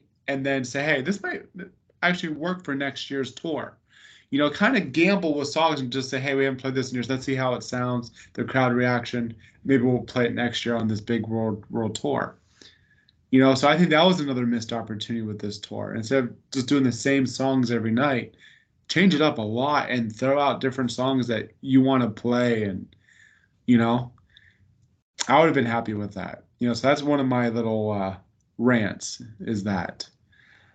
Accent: American